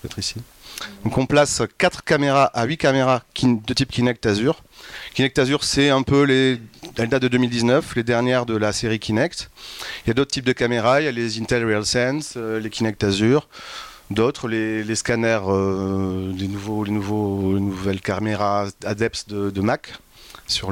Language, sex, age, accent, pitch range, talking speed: French, male, 30-49, French, 110-140 Hz, 180 wpm